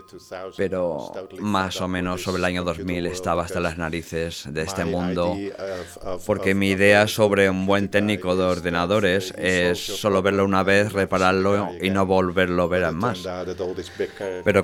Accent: Spanish